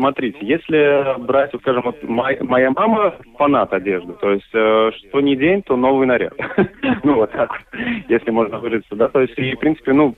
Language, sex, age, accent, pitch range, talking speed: Russian, male, 30-49, native, 115-155 Hz, 185 wpm